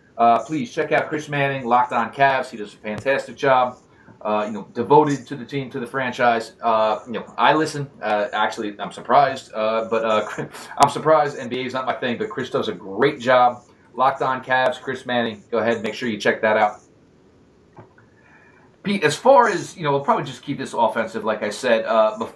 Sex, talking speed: male, 210 wpm